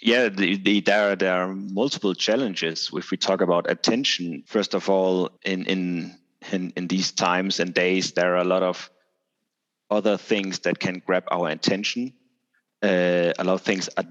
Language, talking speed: English, 185 wpm